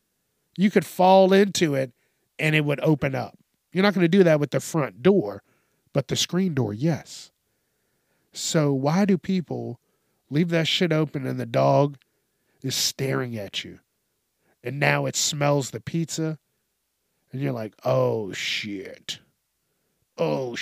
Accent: American